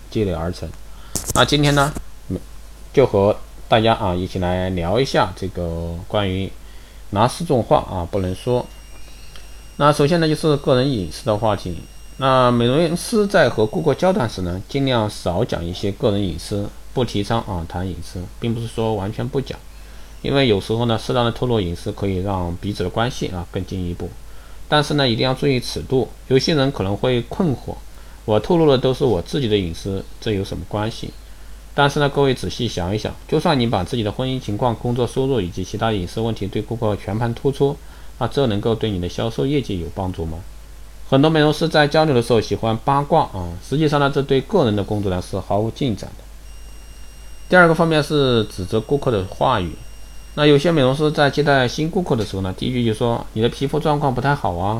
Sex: male